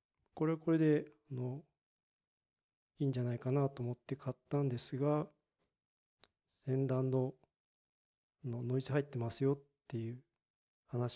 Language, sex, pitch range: Japanese, male, 125-145 Hz